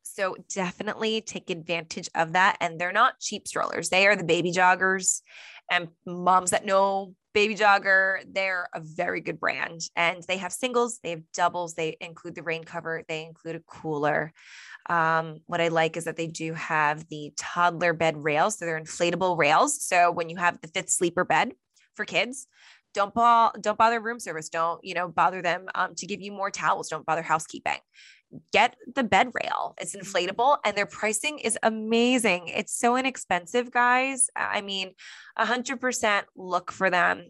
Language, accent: English, American